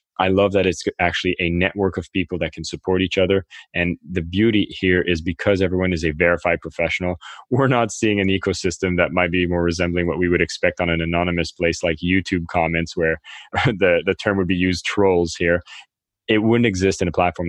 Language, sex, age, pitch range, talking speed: English, male, 20-39, 85-95 Hz, 210 wpm